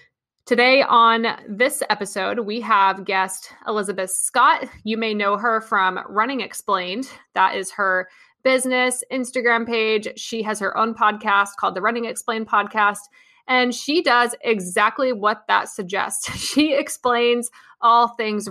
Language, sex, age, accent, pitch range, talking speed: English, female, 20-39, American, 195-245 Hz, 140 wpm